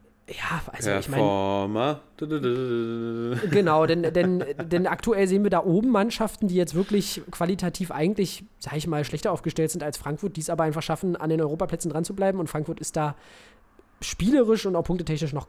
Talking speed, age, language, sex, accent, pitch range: 180 wpm, 20-39, German, male, German, 150-180 Hz